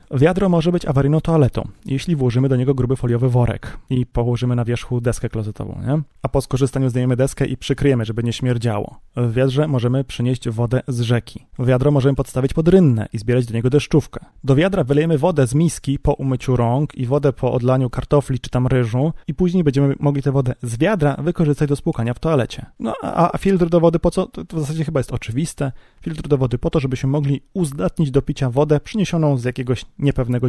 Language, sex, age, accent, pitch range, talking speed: Polish, male, 30-49, native, 125-150 Hz, 205 wpm